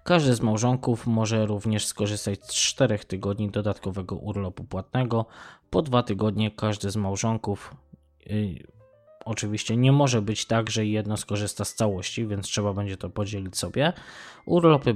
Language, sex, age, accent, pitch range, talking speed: Polish, male, 20-39, native, 100-120 Hz, 145 wpm